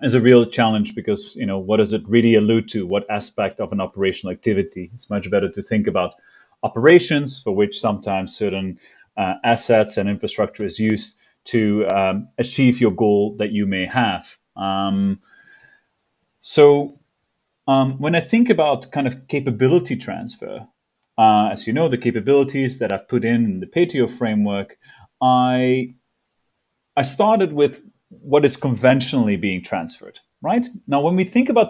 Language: English